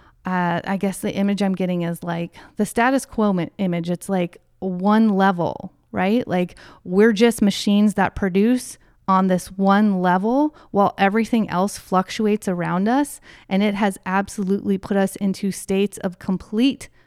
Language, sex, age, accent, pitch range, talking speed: English, female, 30-49, American, 175-205 Hz, 155 wpm